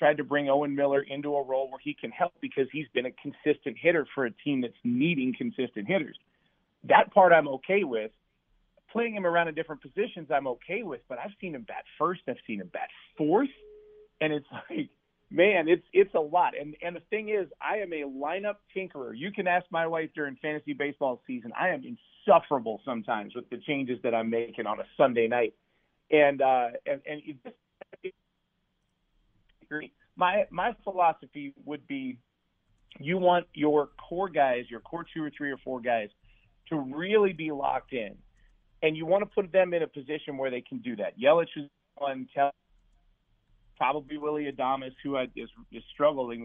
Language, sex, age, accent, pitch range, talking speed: English, male, 40-59, American, 130-190 Hz, 180 wpm